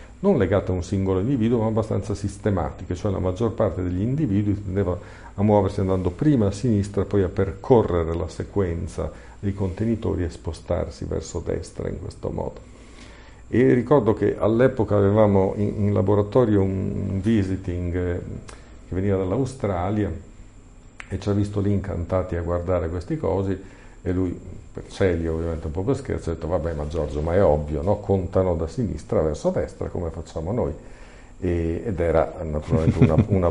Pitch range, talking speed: 85-105 Hz, 160 wpm